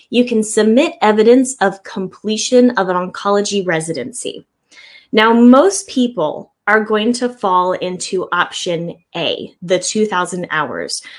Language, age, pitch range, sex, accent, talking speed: English, 10-29, 185-245 Hz, female, American, 125 wpm